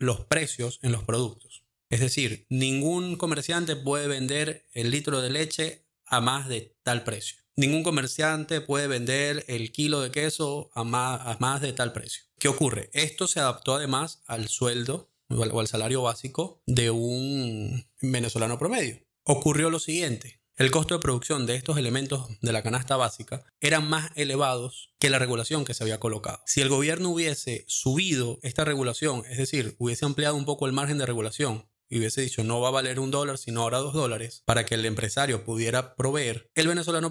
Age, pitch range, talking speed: 20-39, 120-150 Hz, 180 wpm